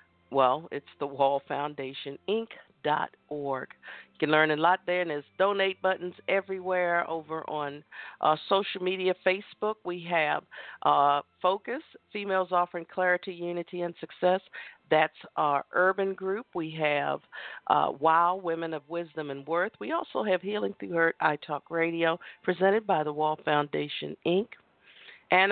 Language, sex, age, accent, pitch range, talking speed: English, female, 50-69, American, 155-185 Hz, 135 wpm